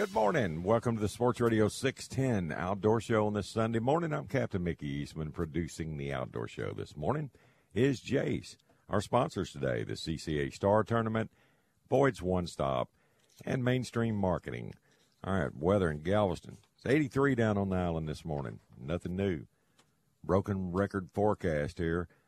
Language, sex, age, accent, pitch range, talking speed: English, male, 50-69, American, 75-100 Hz, 155 wpm